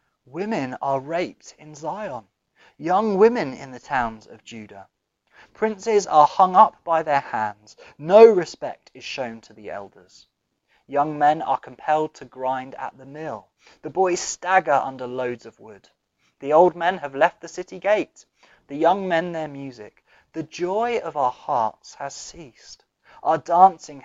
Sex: male